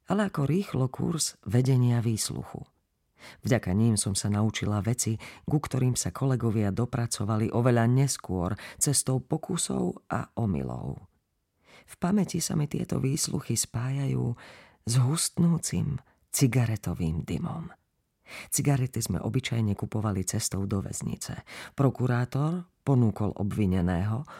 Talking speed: 110 wpm